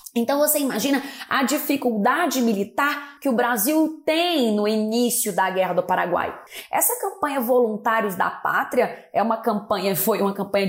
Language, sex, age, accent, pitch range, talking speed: Portuguese, female, 20-39, Brazilian, 210-290 Hz, 150 wpm